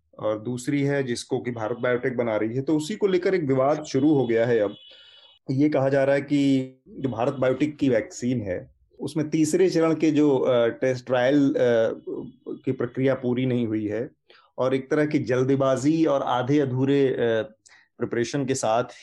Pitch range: 115-145 Hz